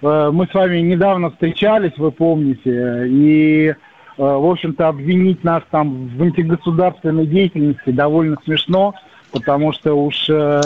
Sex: male